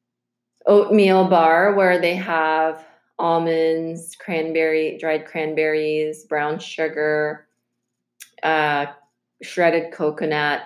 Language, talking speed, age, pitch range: English, 80 wpm, 20-39, 155-185 Hz